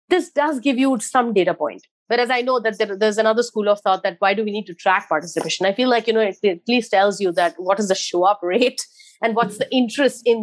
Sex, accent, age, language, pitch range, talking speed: female, Indian, 30-49, English, 190-255 Hz, 265 wpm